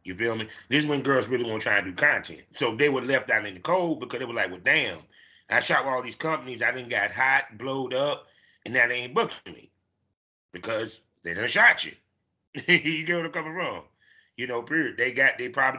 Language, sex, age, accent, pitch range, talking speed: English, male, 30-49, American, 115-155 Hz, 245 wpm